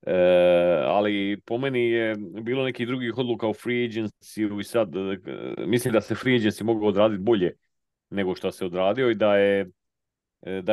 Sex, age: male, 40-59